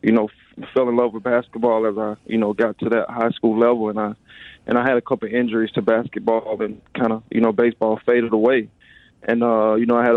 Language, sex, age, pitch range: English, male, 20-39, 110-120 Hz